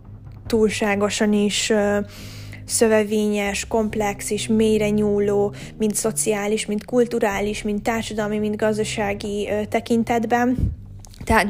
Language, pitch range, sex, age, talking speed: Hungarian, 205-220 Hz, female, 20-39, 90 wpm